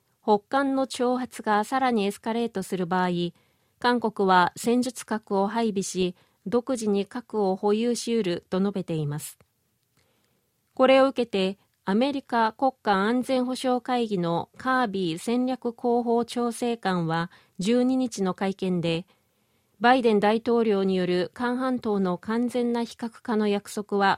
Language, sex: Japanese, female